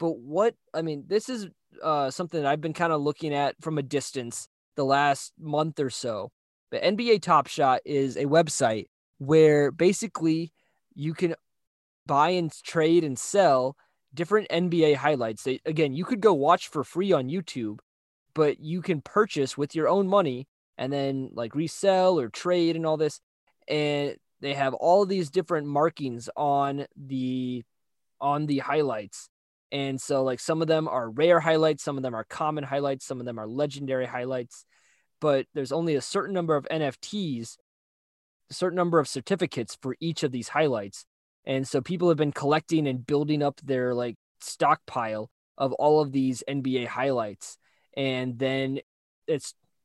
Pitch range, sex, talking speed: 135-165 Hz, male, 170 wpm